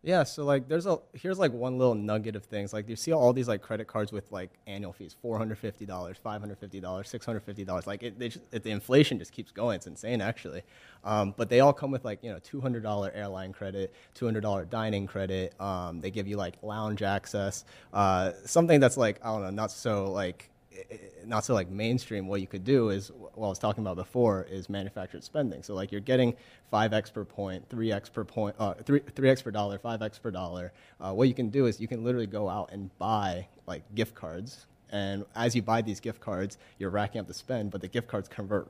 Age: 30-49